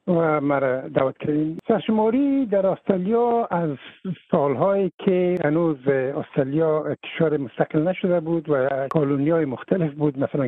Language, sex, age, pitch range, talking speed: Persian, male, 60-79, 150-205 Hz, 110 wpm